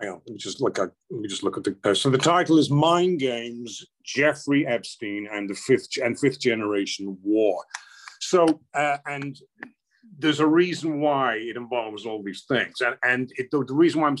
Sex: male